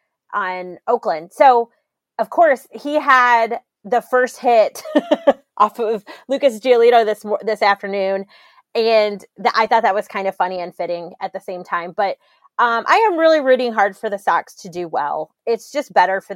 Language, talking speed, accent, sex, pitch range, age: English, 180 wpm, American, female, 175-245 Hz, 30-49